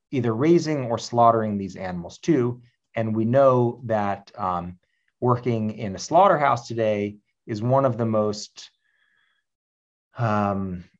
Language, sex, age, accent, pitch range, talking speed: English, male, 30-49, American, 105-140 Hz, 125 wpm